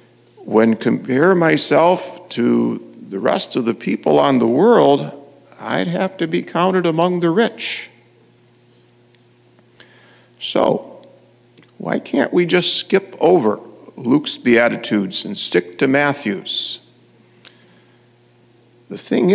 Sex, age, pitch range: male, 50-69, 120-165 Hz